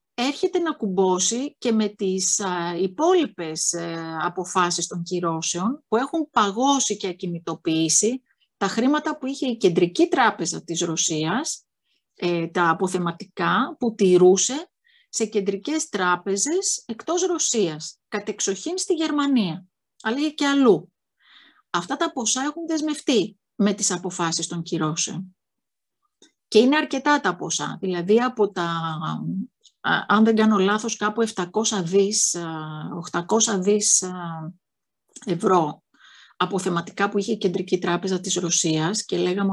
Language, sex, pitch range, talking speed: Greek, female, 185-255 Hz, 120 wpm